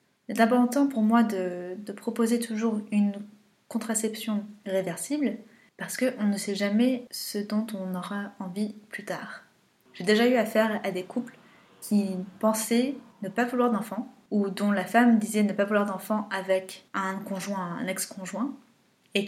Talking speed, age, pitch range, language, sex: 160 wpm, 20-39, 195-230 Hz, French, female